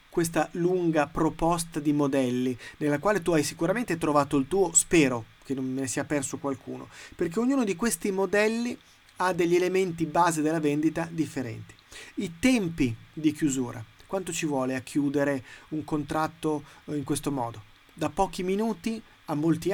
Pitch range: 140-180 Hz